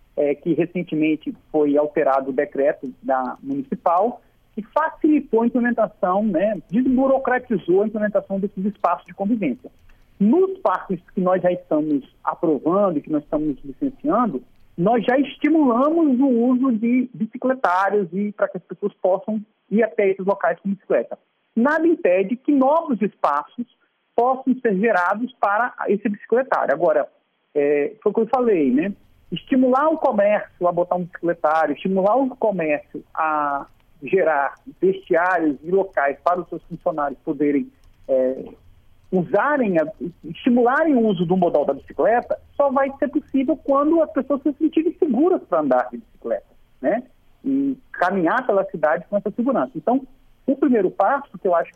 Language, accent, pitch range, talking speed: Portuguese, Brazilian, 170-270 Hz, 150 wpm